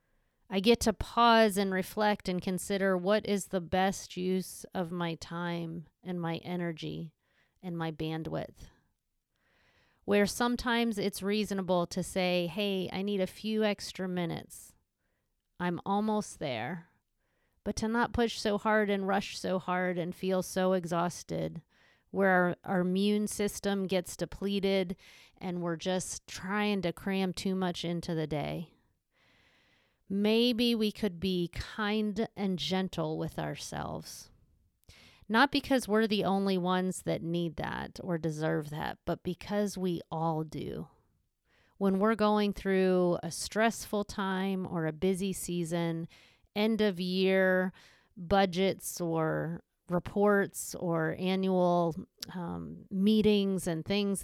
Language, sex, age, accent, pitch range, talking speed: English, female, 30-49, American, 175-205 Hz, 130 wpm